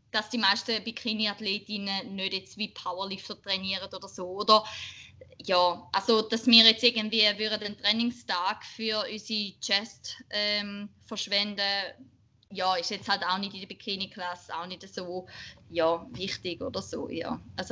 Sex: female